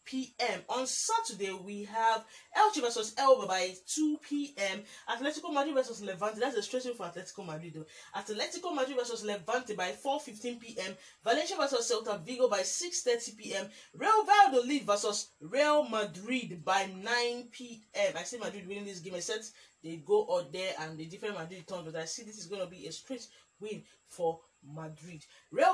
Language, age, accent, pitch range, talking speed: English, 30-49, Nigerian, 190-270 Hz, 180 wpm